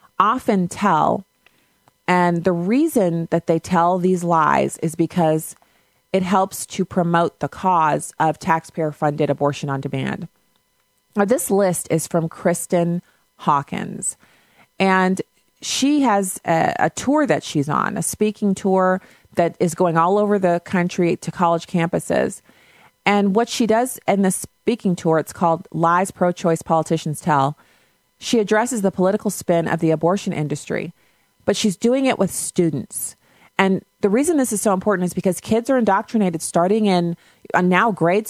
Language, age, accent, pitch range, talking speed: English, 30-49, American, 160-195 Hz, 155 wpm